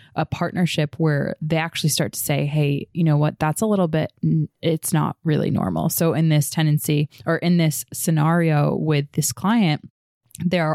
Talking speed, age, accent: 180 wpm, 20-39, American